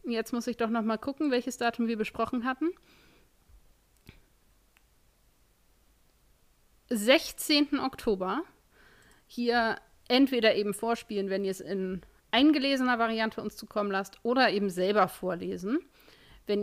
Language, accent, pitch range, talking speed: German, German, 195-245 Hz, 115 wpm